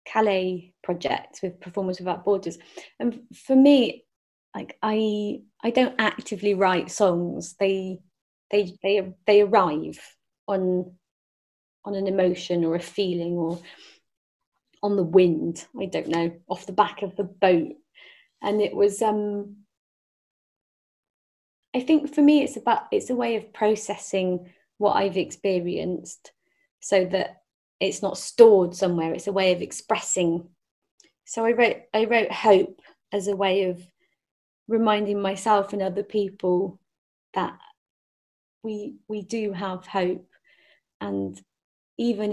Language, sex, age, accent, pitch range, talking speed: English, female, 30-49, British, 180-215 Hz, 130 wpm